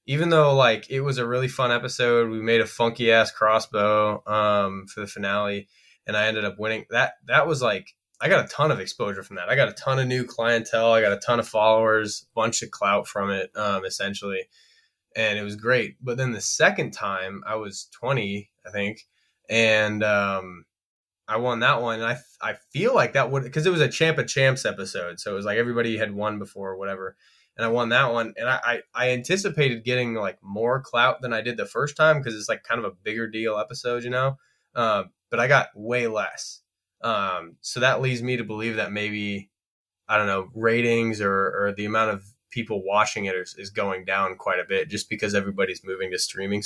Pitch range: 105-125 Hz